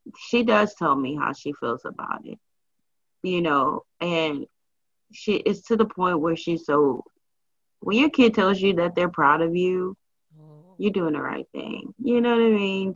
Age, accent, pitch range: 20-39, American, 165-230 Hz